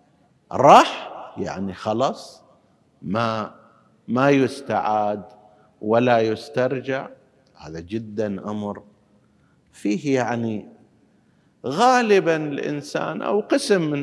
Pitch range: 110-165 Hz